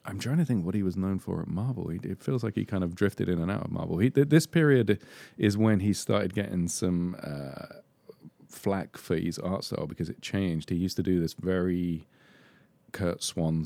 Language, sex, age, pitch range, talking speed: English, male, 40-59, 85-105 Hz, 210 wpm